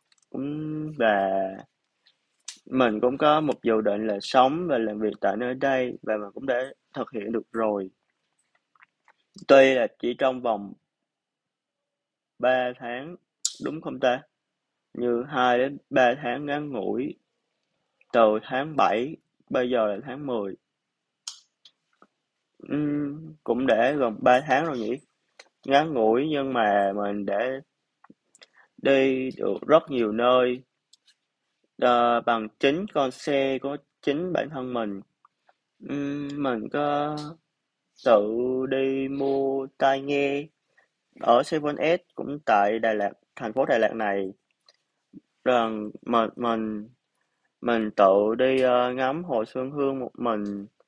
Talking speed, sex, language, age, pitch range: 125 wpm, male, Vietnamese, 20-39, 110-140 Hz